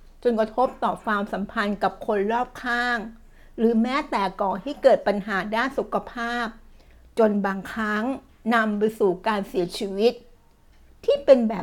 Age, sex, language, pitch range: 60-79, female, Thai, 200-240 Hz